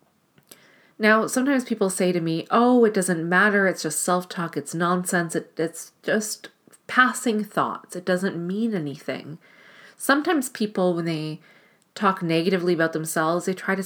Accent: American